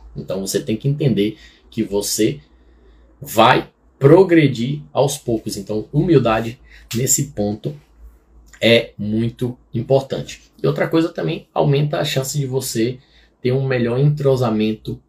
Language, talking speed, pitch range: Portuguese, 125 wpm, 105-135 Hz